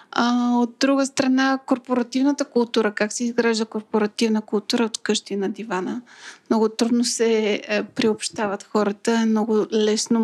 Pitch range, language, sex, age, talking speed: 210-245 Hz, Bulgarian, female, 30-49, 125 wpm